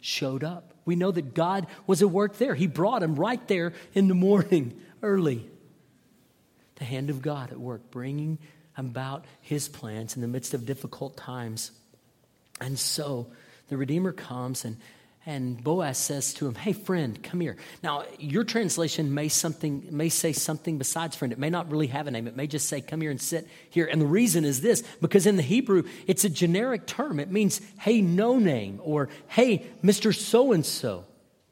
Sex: male